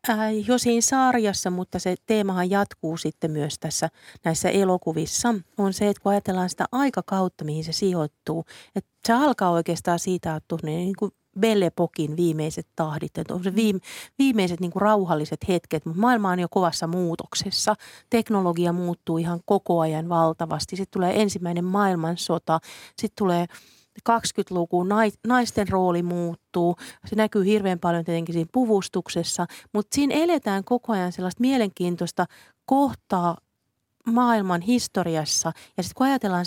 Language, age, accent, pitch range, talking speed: Finnish, 40-59, native, 170-210 Hz, 140 wpm